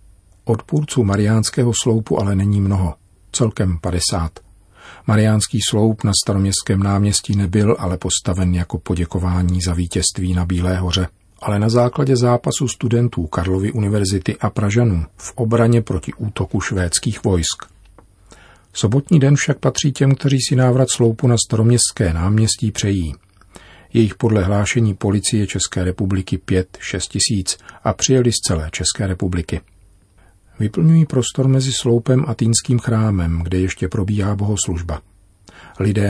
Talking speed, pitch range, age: 130 wpm, 90-110 Hz, 40-59